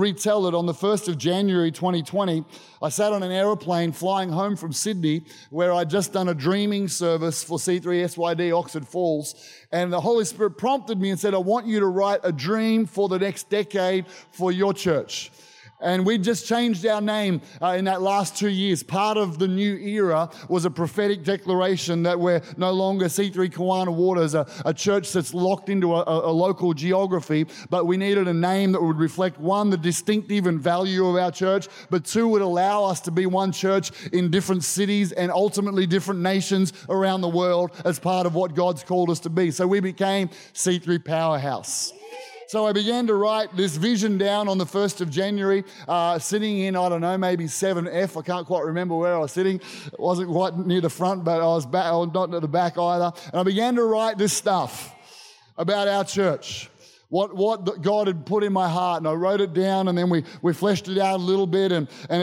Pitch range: 175-200 Hz